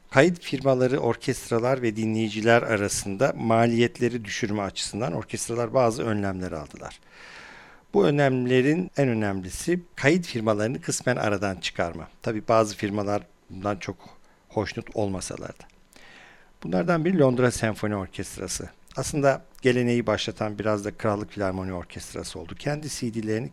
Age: 50-69